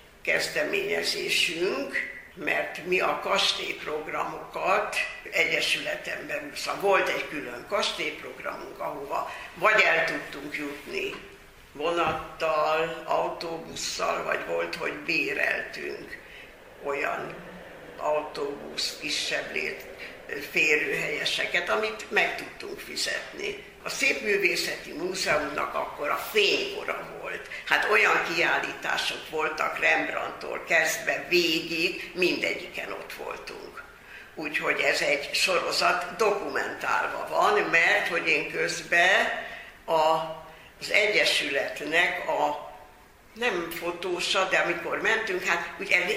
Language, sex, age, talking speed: Hungarian, female, 60-79, 90 wpm